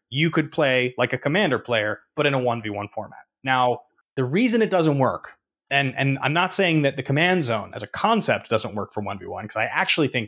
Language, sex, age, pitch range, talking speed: English, male, 20-39, 120-165 Hz, 220 wpm